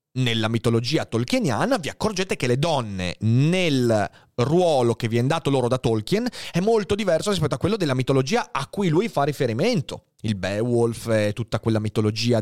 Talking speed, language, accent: 170 wpm, Italian, native